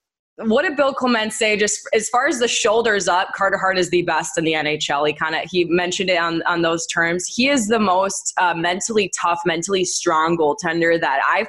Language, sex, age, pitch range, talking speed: English, female, 20-39, 175-235 Hz, 220 wpm